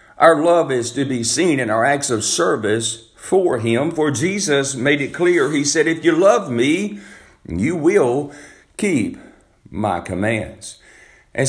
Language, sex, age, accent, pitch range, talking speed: English, male, 50-69, American, 105-145 Hz, 155 wpm